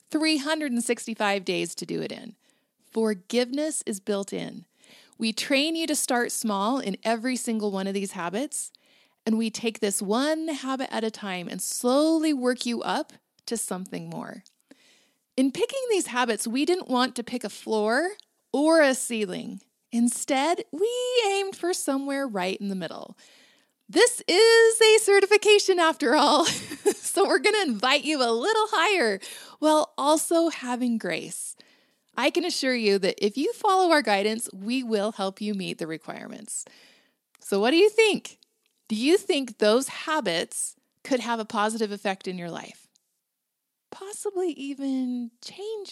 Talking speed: 155 wpm